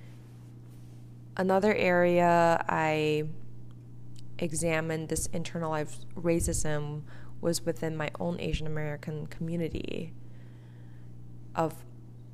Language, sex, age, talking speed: English, female, 20-39, 70 wpm